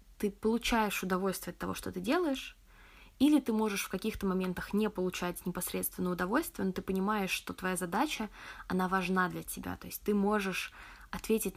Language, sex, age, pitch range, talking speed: Russian, female, 20-39, 180-215 Hz, 170 wpm